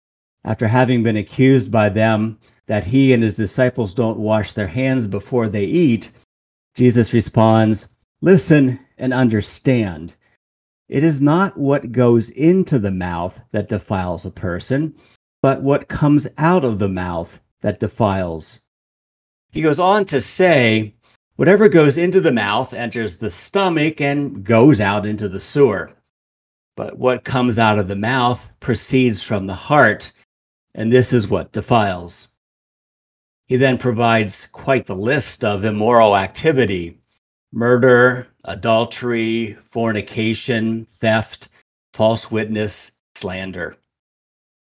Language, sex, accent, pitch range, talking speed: English, male, American, 105-130 Hz, 125 wpm